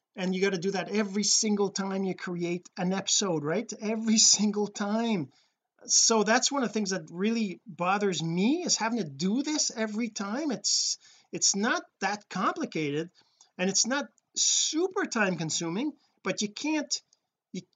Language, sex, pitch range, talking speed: English, male, 170-225 Hz, 165 wpm